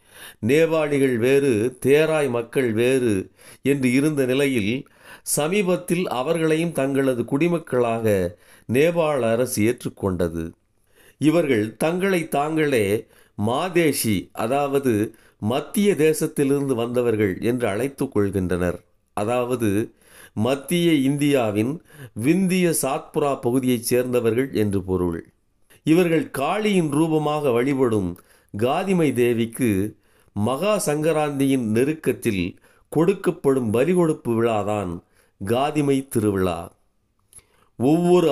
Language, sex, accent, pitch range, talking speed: Tamil, male, native, 105-150 Hz, 75 wpm